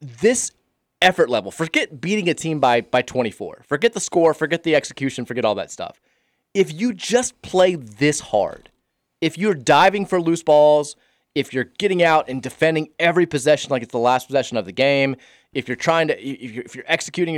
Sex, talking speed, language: male, 195 wpm, English